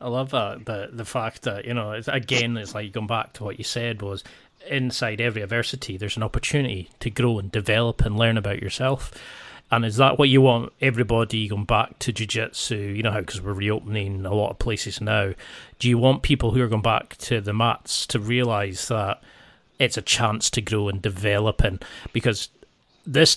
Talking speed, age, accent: 205 wpm, 30-49, British